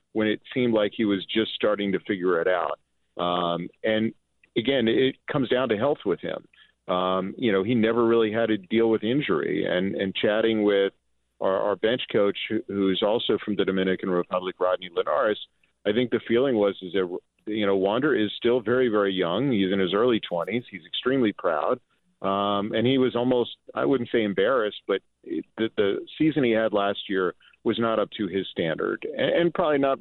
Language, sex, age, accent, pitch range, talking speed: English, male, 40-59, American, 100-125 Hz, 200 wpm